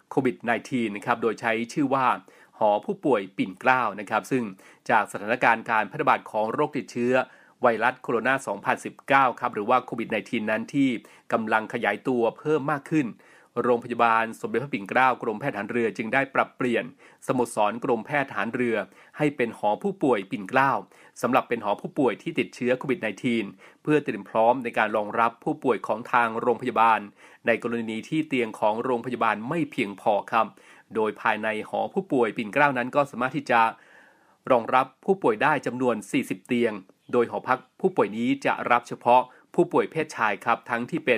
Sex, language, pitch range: male, Thai, 110-130 Hz